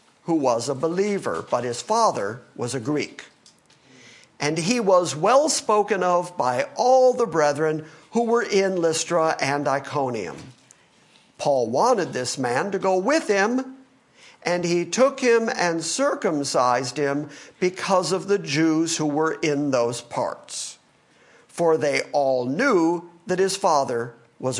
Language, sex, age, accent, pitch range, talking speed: English, male, 50-69, American, 145-195 Hz, 140 wpm